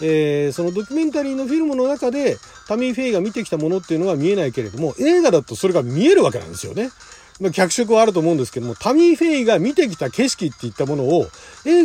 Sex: male